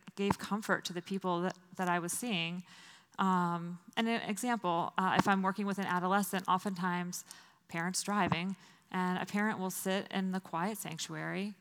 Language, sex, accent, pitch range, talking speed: English, female, American, 175-195 Hz, 170 wpm